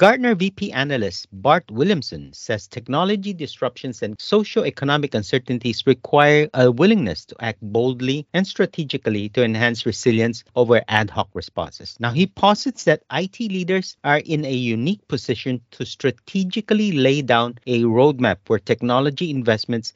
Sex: male